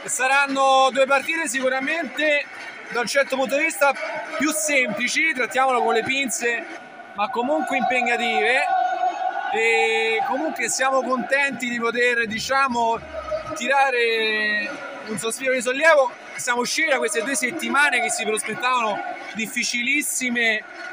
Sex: male